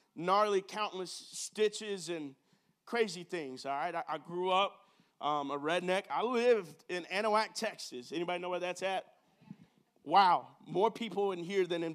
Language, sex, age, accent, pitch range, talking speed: English, male, 30-49, American, 150-200 Hz, 160 wpm